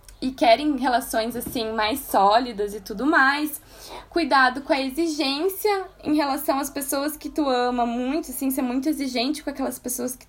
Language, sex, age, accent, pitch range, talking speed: Portuguese, female, 10-29, Brazilian, 245-310 Hz, 170 wpm